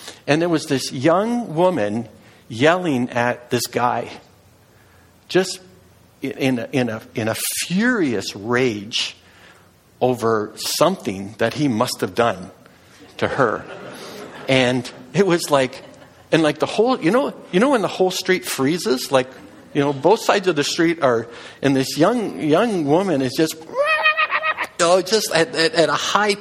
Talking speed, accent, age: 155 wpm, American, 60-79